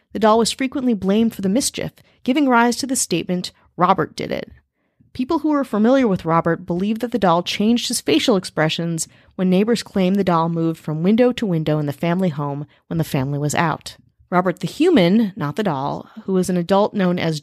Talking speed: 210 wpm